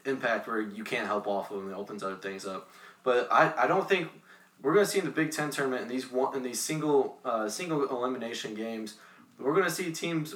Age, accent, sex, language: 20-39, American, male, English